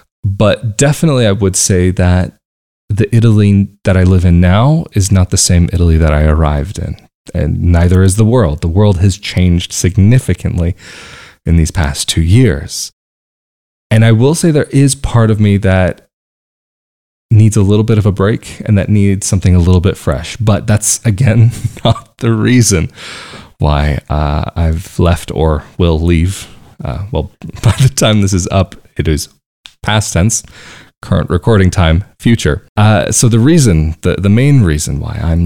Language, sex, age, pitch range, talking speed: English, male, 20-39, 85-105 Hz, 175 wpm